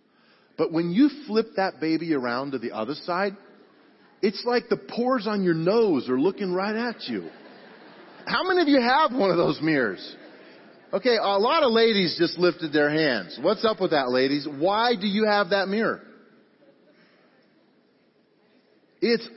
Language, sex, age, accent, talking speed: English, male, 40-59, American, 165 wpm